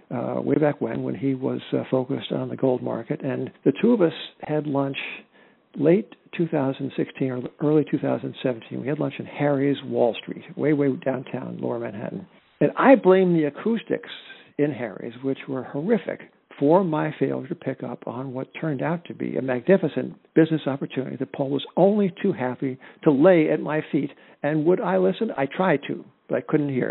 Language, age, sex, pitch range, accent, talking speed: English, 60-79, male, 130-155 Hz, American, 185 wpm